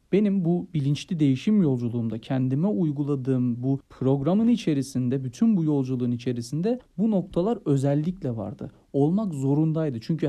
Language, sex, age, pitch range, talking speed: Turkish, male, 40-59, 130-185 Hz, 120 wpm